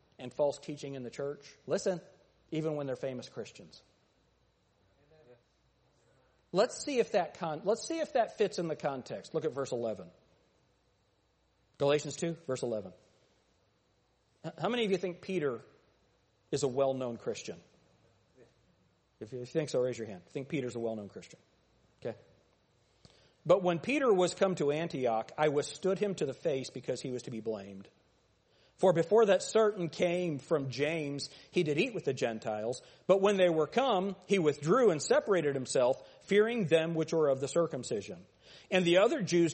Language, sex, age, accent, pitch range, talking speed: English, male, 40-59, American, 140-195 Hz, 170 wpm